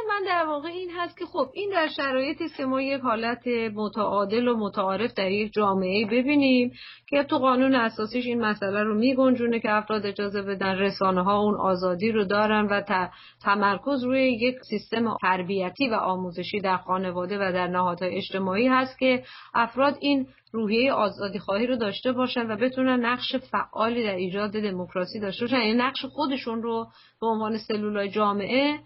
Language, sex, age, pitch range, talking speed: Persian, female, 40-59, 205-260 Hz, 155 wpm